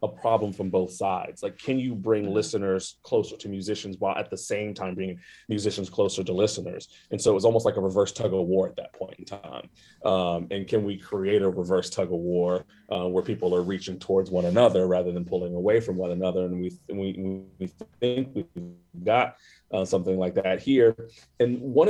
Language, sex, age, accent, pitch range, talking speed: English, male, 30-49, American, 95-130 Hz, 215 wpm